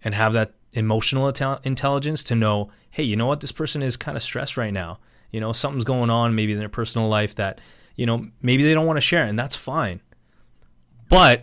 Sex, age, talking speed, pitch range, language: male, 30-49, 220 wpm, 105-130 Hz, English